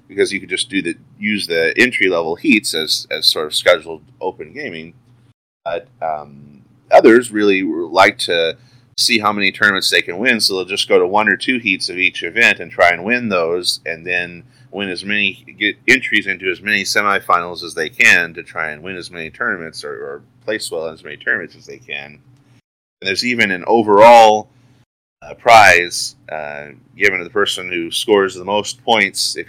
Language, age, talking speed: English, 30-49, 200 wpm